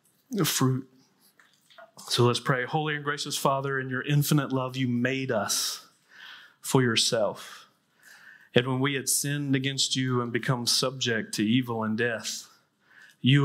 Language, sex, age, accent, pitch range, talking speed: English, male, 30-49, American, 115-130 Hz, 145 wpm